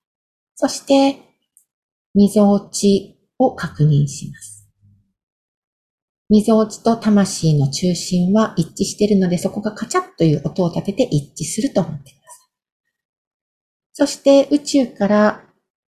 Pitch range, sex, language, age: 160-230 Hz, female, Japanese, 50-69